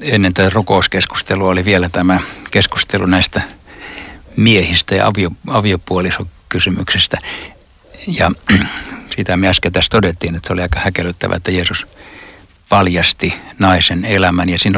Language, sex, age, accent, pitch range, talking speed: Finnish, male, 60-79, native, 85-100 Hz, 120 wpm